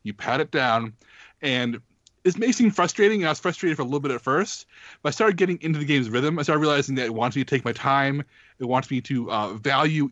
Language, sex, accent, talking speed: English, male, American, 260 wpm